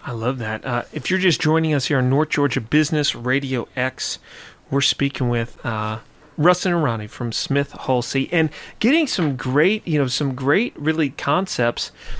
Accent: American